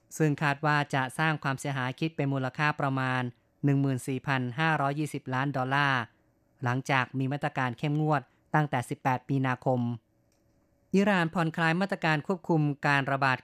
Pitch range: 130-150 Hz